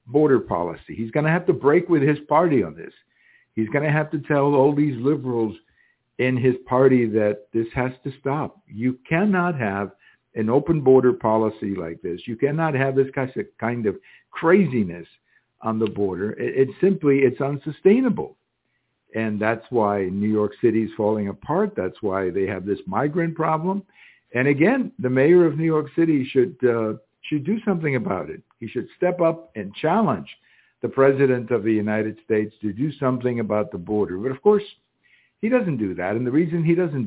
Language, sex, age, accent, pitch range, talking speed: English, male, 60-79, American, 110-155 Hz, 185 wpm